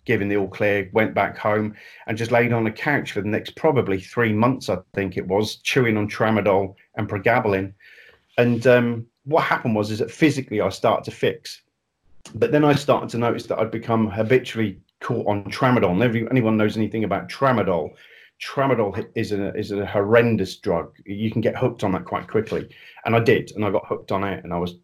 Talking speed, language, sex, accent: 205 wpm, English, male, British